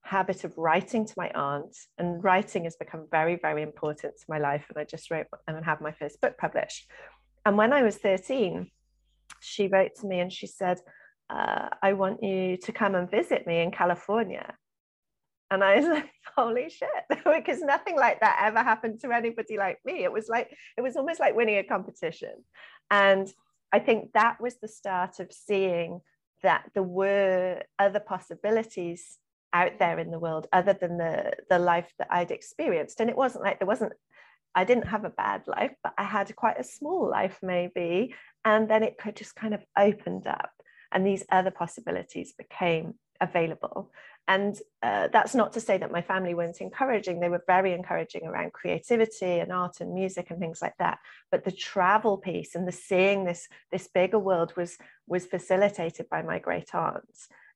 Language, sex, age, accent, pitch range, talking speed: English, female, 30-49, British, 175-220 Hz, 190 wpm